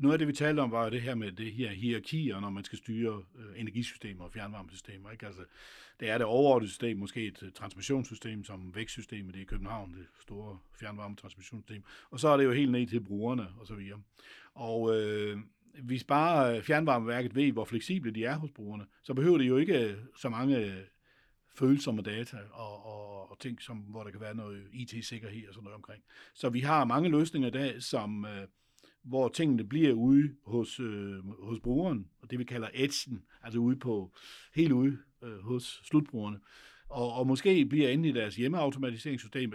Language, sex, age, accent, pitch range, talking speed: Danish, male, 60-79, native, 110-145 Hz, 185 wpm